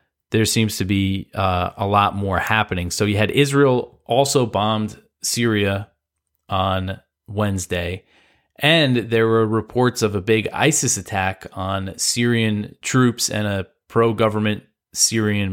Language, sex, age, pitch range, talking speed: English, male, 20-39, 95-115 Hz, 130 wpm